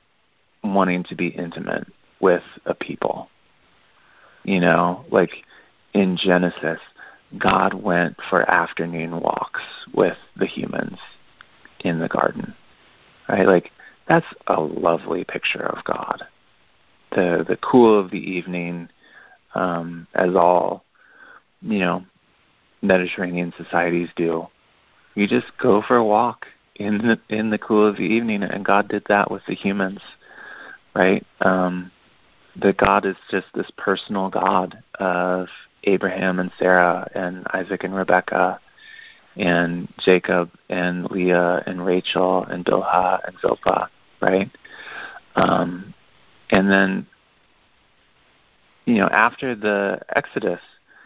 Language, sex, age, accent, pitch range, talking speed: English, male, 30-49, American, 90-105 Hz, 120 wpm